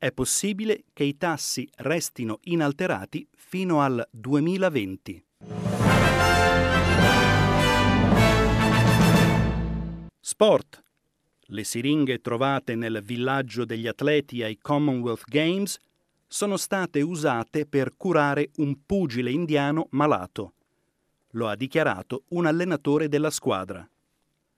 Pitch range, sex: 120-165 Hz, male